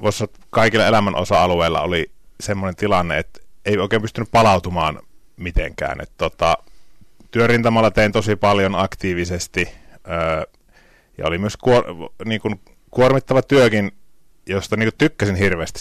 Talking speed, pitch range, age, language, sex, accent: 115 wpm, 90-110 Hz, 30-49, Finnish, male, native